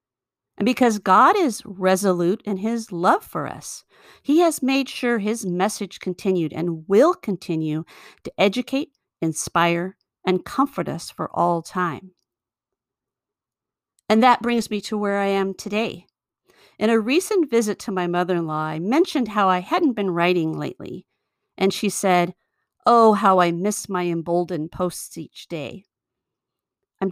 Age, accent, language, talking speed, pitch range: 50-69, American, English, 145 wpm, 180-230 Hz